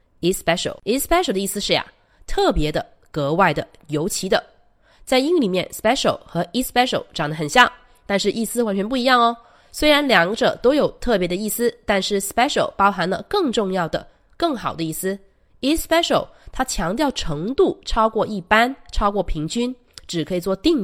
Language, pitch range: Chinese, 180-250 Hz